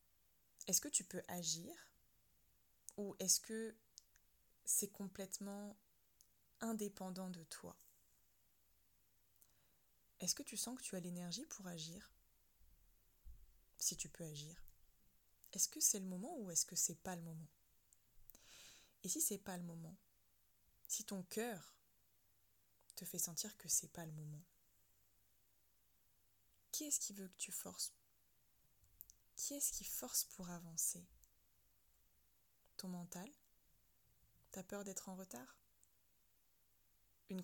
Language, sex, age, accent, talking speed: French, female, 20-39, French, 125 wpm